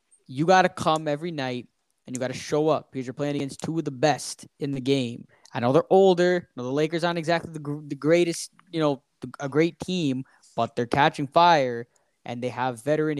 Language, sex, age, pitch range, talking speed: English, male, 10-29, 140-190 Hz, 215 wpm